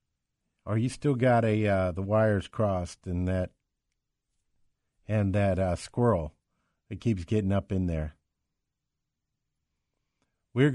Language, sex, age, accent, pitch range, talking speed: English, male, 50-69, American, 90-115 Hz, 125 wpm